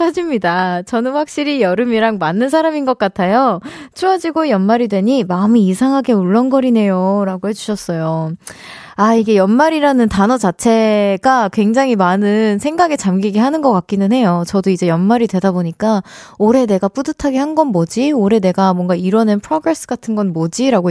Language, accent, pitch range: Korean, native, 190-255 Hz